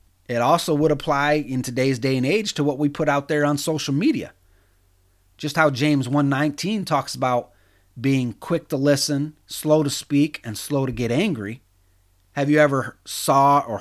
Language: English